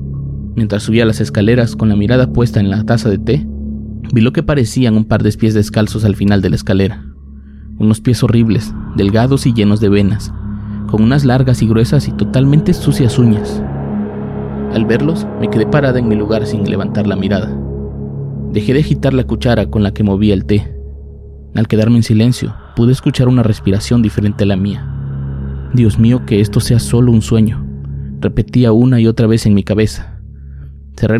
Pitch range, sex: 95-115 Hz, male